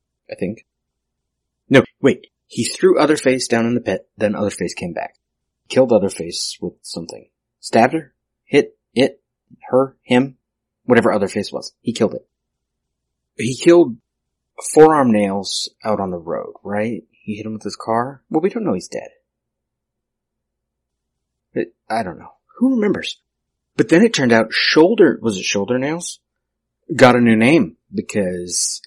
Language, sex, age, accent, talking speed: English, male, 30-49, American, 155 wpm